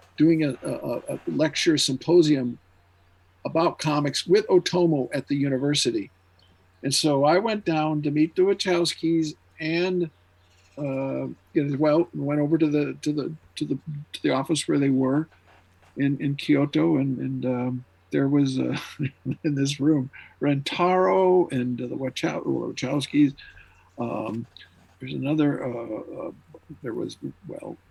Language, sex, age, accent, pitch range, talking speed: English, male, 50-69, American, 125-165 Hz, 140 wpm